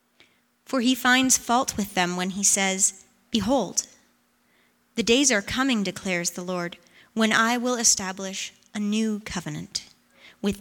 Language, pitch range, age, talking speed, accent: English, 190-235 Hz, 30-49, 140 wpm, American